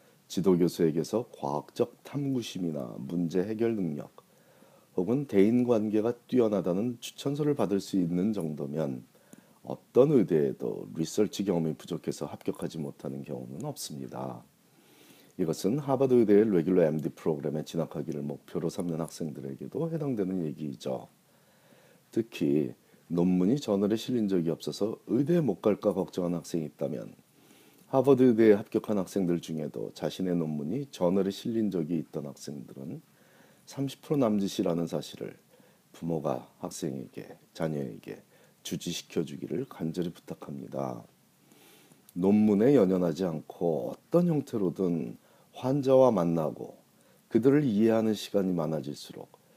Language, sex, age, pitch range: Korean, male, 40-59, 80-115 Hz